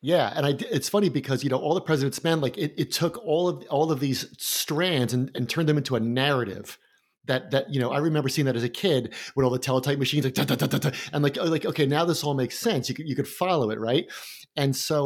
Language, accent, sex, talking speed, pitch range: English, American, male, 270 wpm, 130-160 Hz